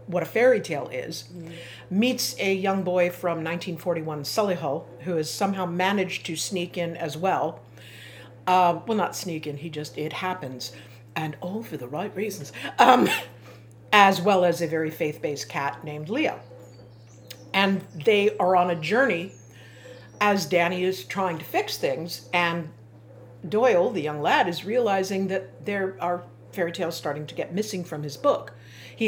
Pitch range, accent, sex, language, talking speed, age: 140-190 Hz, American, female, English, 165 wpm, 50-69